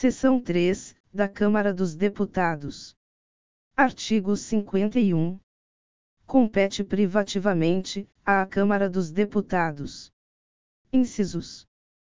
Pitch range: 180-205 Hz